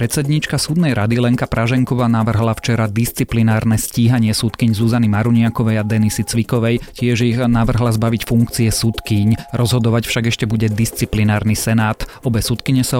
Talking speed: 140 wpm